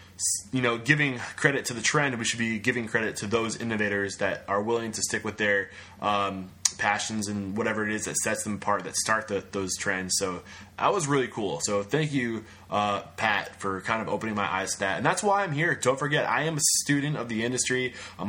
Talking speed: 230 wpm